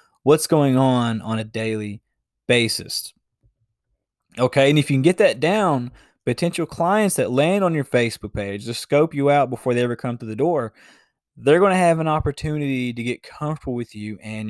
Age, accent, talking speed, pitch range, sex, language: 20-39, American, 190 wpm, 115-140 Hz, male, English